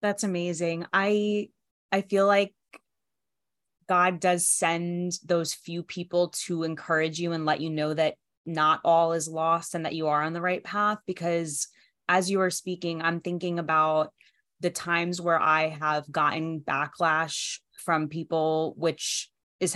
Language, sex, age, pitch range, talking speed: English, female, 20-39, 160-180 Hz, 155 wpm